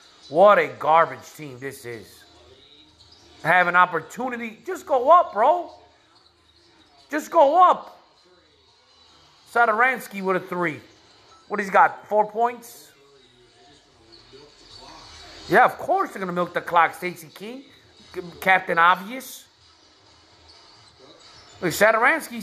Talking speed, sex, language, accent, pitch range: 105 wpm, male, English, American, 135-230 Hz